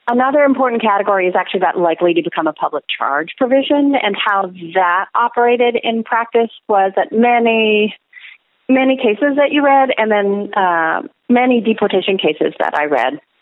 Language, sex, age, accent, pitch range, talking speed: English, female, 40-59, American, 185-235 Hz, 160 wpm